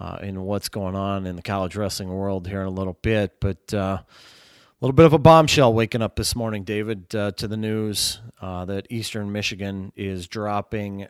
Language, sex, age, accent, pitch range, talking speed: English, male, 30-49, American, 95-110 Hz, 205 wpm